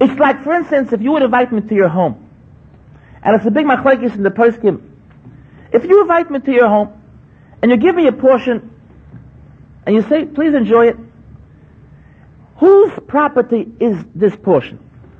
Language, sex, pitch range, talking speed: English, male, 195-275 Hz, 180 wpm